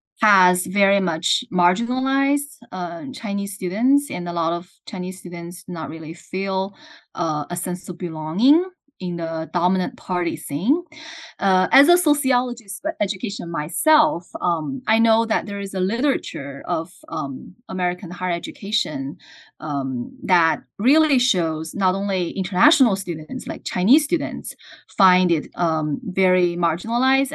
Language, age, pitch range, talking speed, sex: English, 20-39, 170-255 Hz, 135 wpm, female